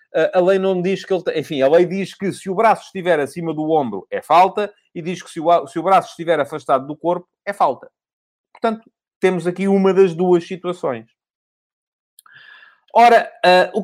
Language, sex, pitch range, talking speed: Portuguese, male, 135-185 Hz, 150 wpm